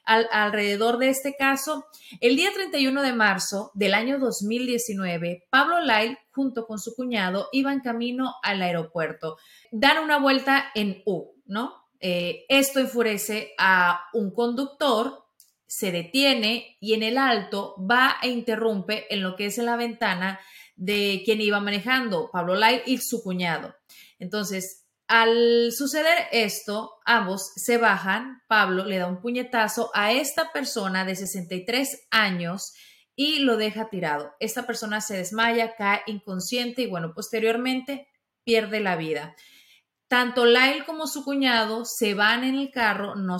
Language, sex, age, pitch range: Spanish, female, 30-49, 200-250 Hz